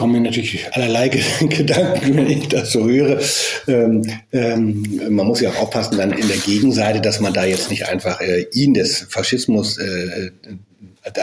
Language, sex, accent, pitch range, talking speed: German, male, German, 100-135 Hz, 170 wpm